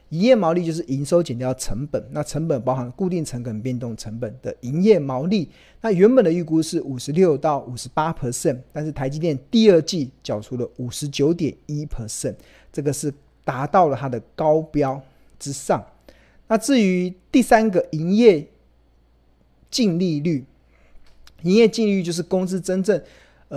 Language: Chinese